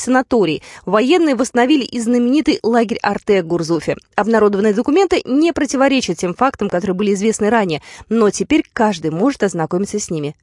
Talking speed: 145 wpm